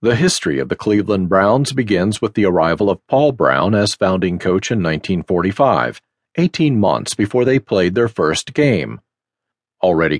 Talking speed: 160 wpm